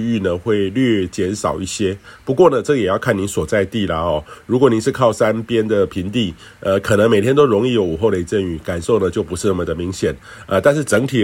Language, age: Chinese, 50-69